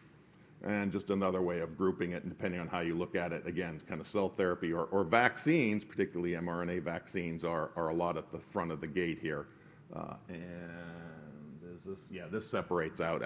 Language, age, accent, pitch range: English, 50-69, American, 85-115 Hz